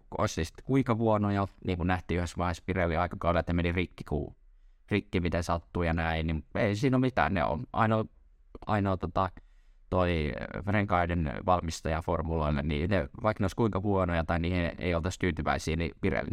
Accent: native